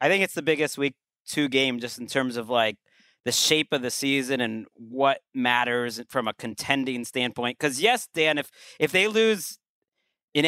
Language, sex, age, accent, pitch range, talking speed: English, male, 30-49, American, 135-175 Hz, 190 wpm